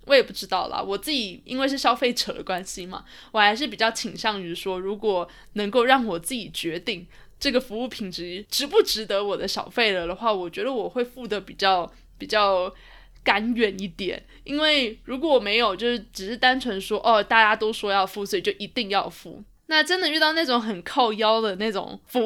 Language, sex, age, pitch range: Chinese, female, 20-39, 200-265 Hz